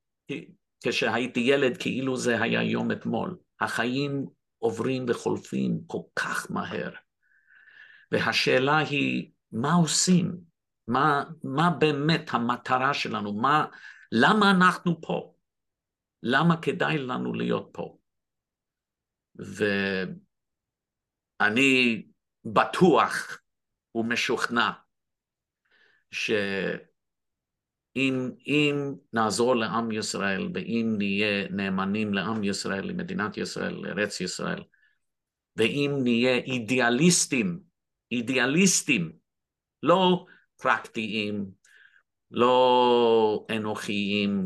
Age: 50-69